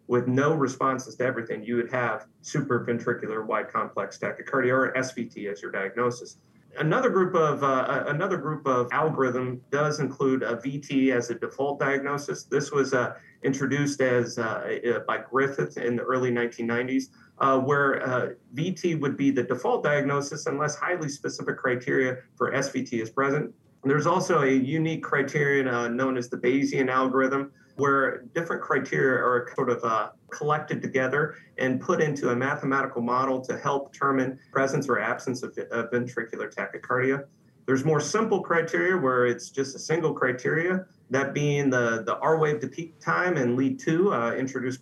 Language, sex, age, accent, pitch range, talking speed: English, male, 40-59, American, 125-150 Hz, 160 wpm